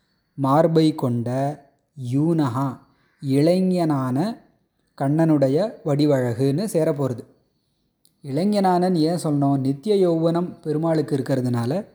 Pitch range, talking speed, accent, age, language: 135-170 Hz, 70 wpm, native, 30-49, Tamil